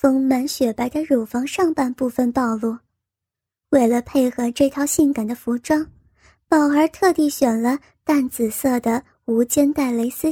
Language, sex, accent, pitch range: Chinese, male, native, 240-300 Hz